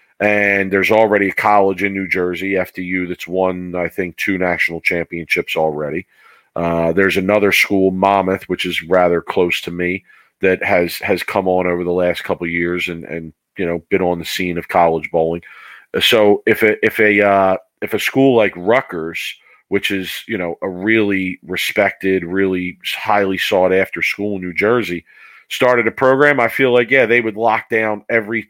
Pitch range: 90-105 Hz